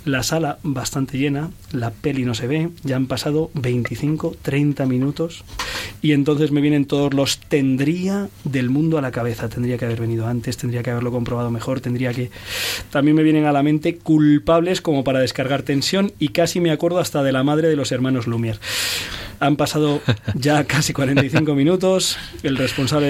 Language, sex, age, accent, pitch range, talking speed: Spanish, male, 20-39, Spanish, 125-155 Hz, 180 wpm